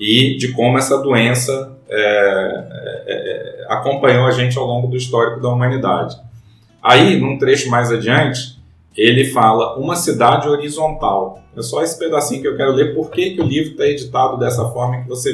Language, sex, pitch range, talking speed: Portuguese, male, 115-150 Hz, 175 wpm